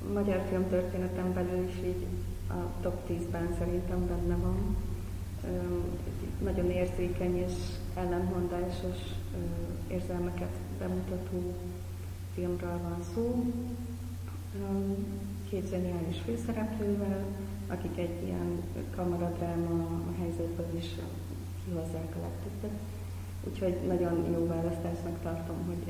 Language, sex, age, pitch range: English, female, 30-49, 85-90 Hz